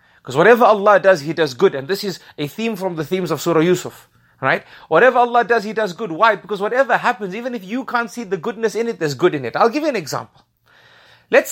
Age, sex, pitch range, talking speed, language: 30-49, male, 155-225 Hz, 250 wpm, English